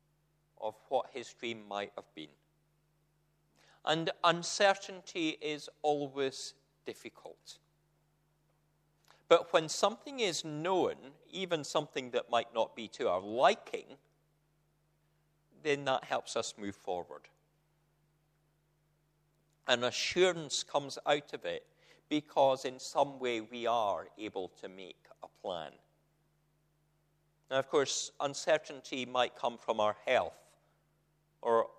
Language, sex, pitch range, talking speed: English, male, 135-155 Hz, 110 wpm